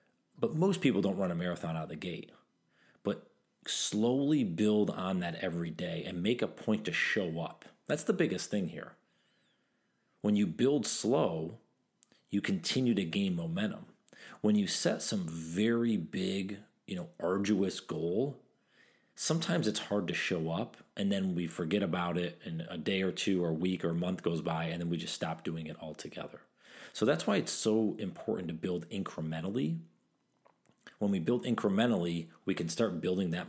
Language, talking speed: English, 180 wpm